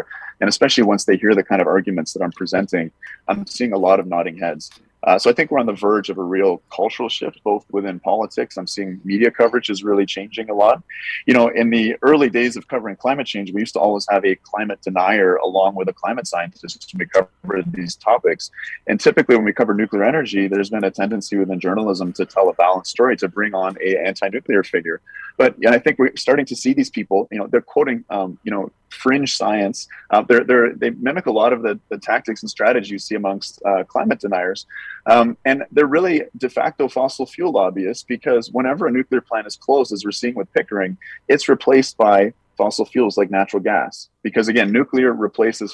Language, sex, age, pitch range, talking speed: English, male, 30-49, 95-120 Hz, 215 wpm